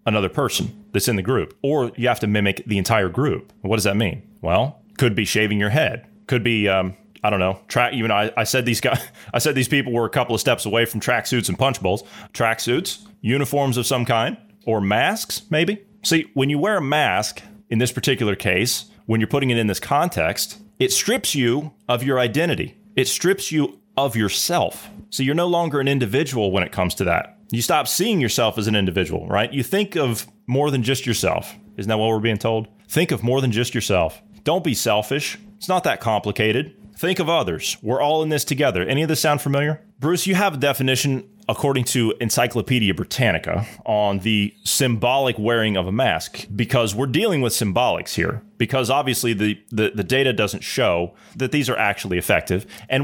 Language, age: English, 30-49